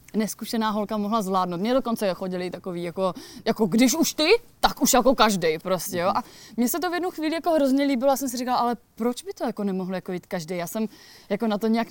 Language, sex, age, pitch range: Czech, female, 20-39, 190-230 Hz